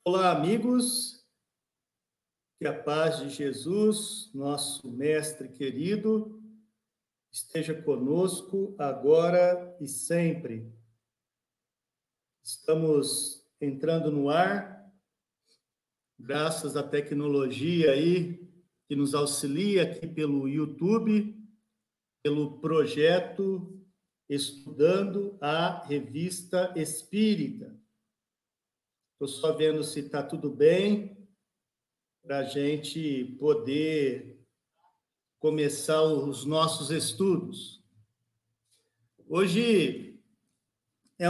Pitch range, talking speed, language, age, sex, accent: 145-205 Hz, 75 wpm, Portuguese, 50-69, male, Brazilian